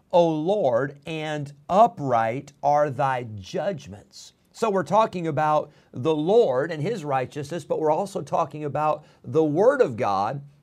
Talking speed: 140 wpm